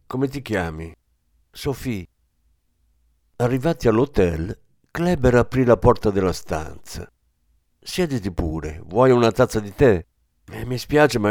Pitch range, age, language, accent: 80-125 Hz, 60-79, Italian, native